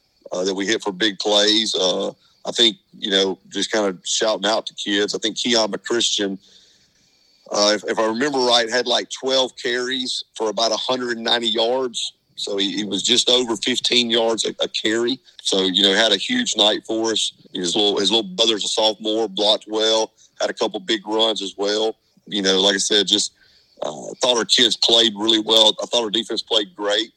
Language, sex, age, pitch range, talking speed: English, male, 40-59, 105-115 Hz, 210 wpm